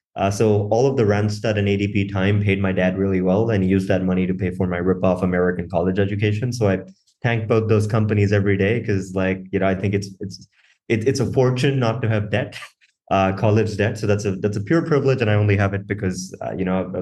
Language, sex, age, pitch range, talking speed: English, male, 20-39, 95-110 Hz, 255 wpm